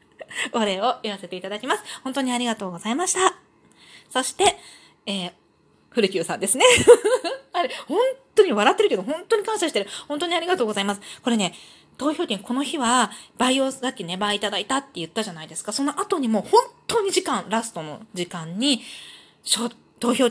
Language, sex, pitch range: Japanese, female, 205-320 Hz